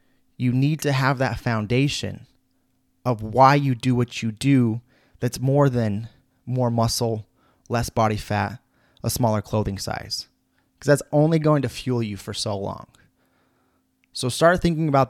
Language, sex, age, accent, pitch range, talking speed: English, male, 30-49, American, 110-135 Hz, 155 wpm